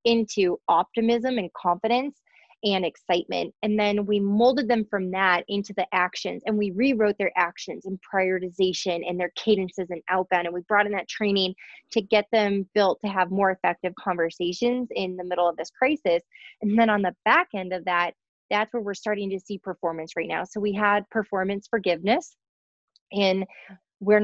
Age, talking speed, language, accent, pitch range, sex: 20-39, 180 wpm, English, American, 185-220 Hz, female